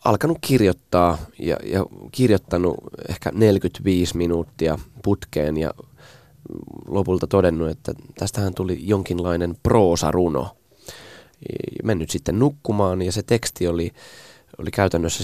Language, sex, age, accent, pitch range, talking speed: Finnish, male, 20-39, native, 80-105 Hz, 100 wpm